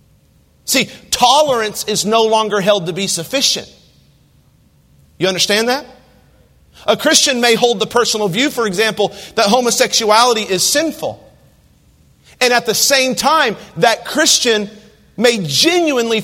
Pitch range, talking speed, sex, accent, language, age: 205-265 Hz, 125 wpm, male, American, English, 40-59